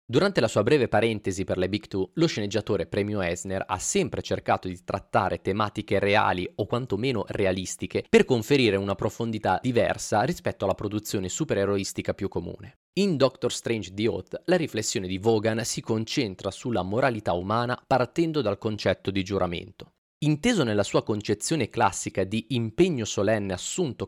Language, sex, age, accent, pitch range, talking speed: Italian, male, 20-39, native, 100-130 Hz, 155 wpm